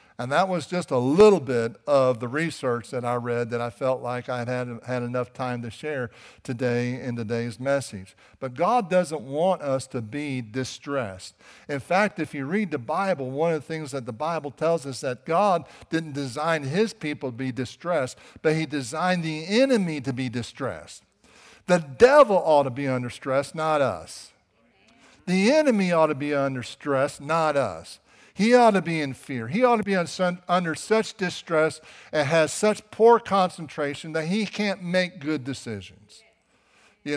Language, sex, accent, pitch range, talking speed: English, male, American, 135-180 Hz, 185 wpm